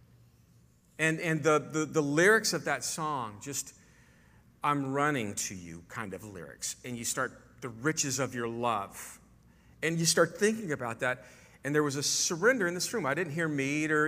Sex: male